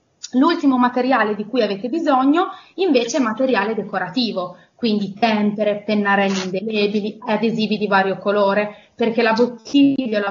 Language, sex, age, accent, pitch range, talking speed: Italian, female, 20-39, native, 200-265 Hz, 140 wpm